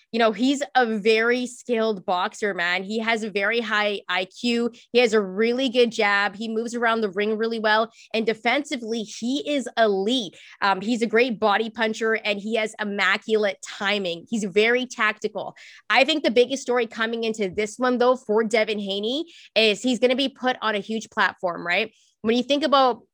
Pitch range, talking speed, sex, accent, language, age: 205-240 Hz, 190 wpm, female, American, English, 20-39